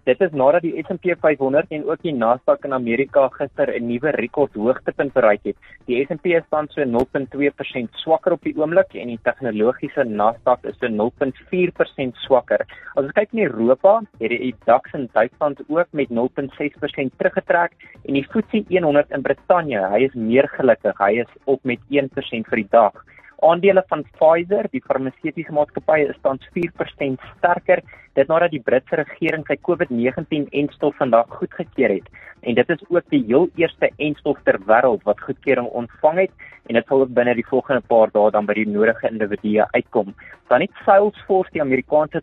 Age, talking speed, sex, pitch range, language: 30-49, 175 wpm, male, 125-170 Hz, English